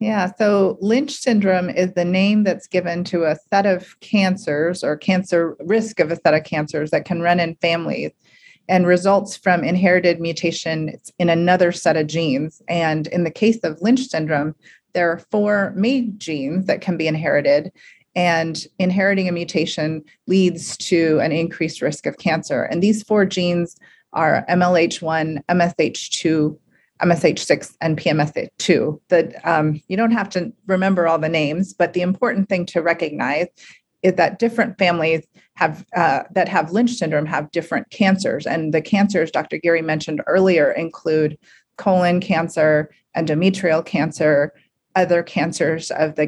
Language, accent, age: English, American, 30-49